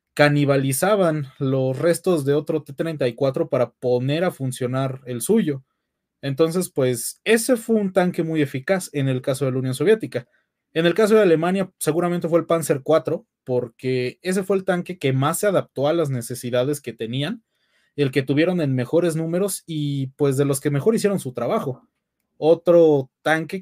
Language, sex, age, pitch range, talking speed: Spanish, male, 20-39, 130-170 Hz, 175 wpm